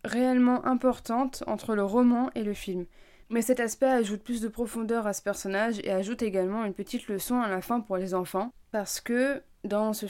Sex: female